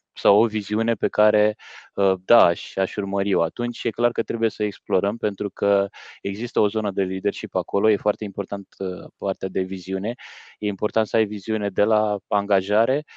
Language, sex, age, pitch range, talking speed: Romanian, male, 20-39, 95-110 Hz, 180 wpm